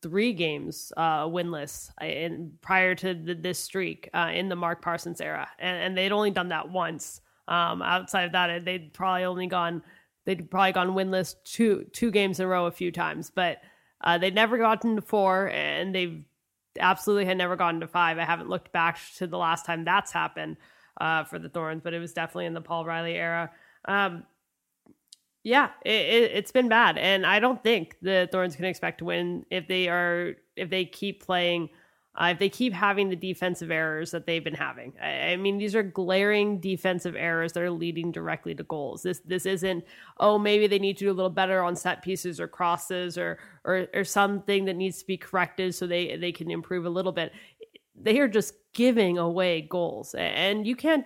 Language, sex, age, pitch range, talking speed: English, female, 20-39, 170-195 Hz, 205 wpm